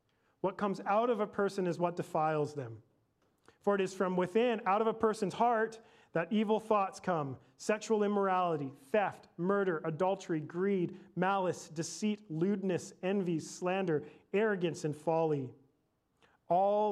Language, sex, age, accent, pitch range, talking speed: English, male, 40-59, American, 170-220 Hz, 140 wpm